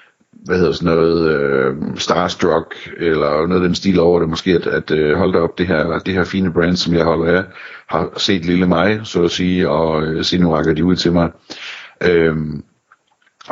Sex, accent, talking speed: male, native, 200 wpm